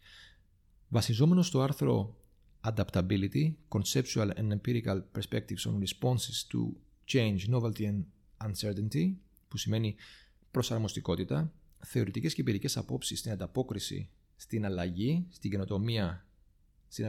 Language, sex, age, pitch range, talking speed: Greek, male, 30-49, 100-145 Hz, 100 wpm